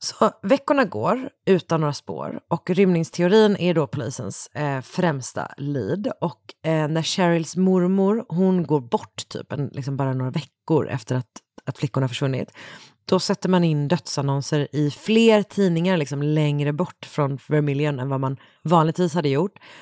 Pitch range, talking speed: 140-180 Hz, 155 wpm